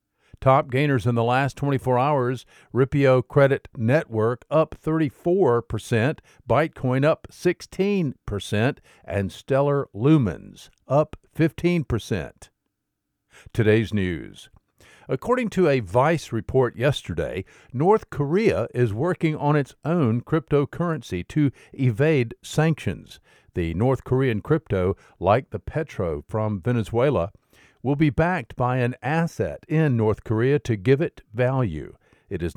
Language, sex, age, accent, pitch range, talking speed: English, male, 50-69, American, 110-150 Hz, 115 wpm